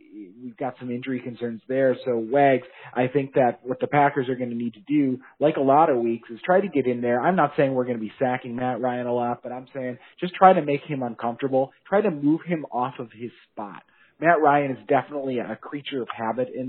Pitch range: 120-140 Hz